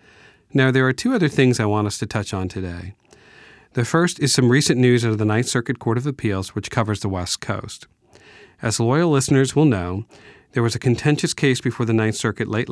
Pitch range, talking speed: 105-130 Hz, 220 wpm